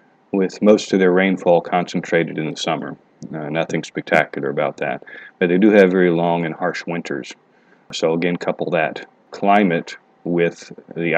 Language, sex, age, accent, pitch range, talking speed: English, male, 40-59, American, 85-100 Hz, 160 wpm